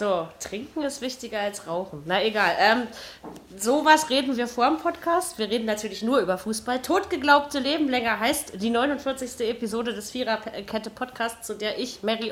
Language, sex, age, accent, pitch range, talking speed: German, female, 20-39, German, 205-275 Hz, 170 wpm